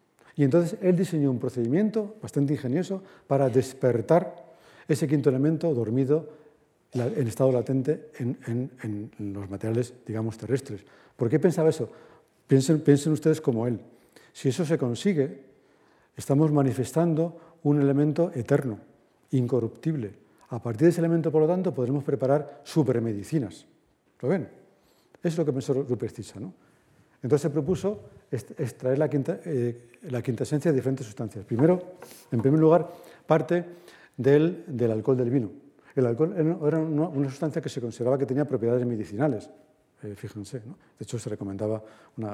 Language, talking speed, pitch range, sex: Spanish, 150 wpm, 115-155 Hz, male